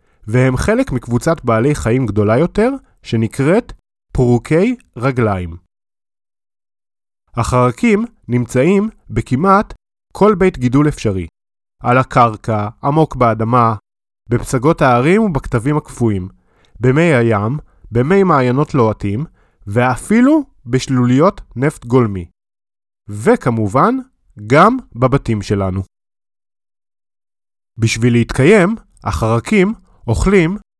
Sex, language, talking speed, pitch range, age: male, Hebrew, 85 wpm, 110-165 Hz, 20-39